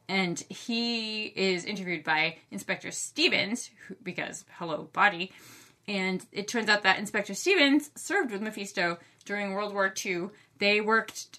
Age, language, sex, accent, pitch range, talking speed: 20-39, English, female, American, 170-225 Hz, 135 wpm